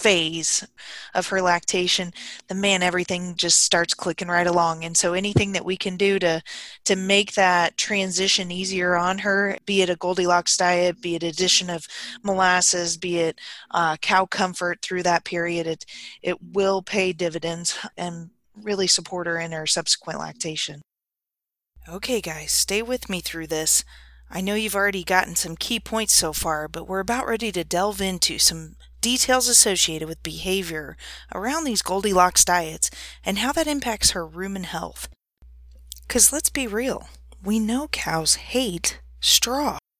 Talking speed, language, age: 160 wpm, English, 20-39